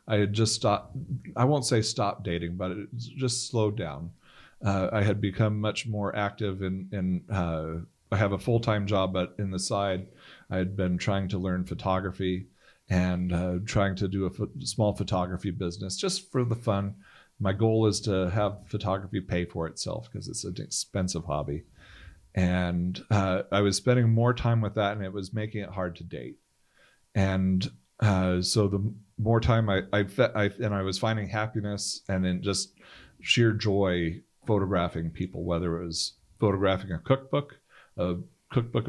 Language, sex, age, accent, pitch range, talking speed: English, male, 40-59, American, 90-110 Hz, 175 wpm